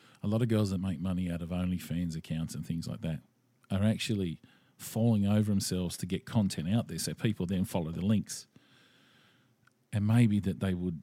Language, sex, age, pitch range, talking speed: English, male, 40-59, 90-120 Hz, 195 wpm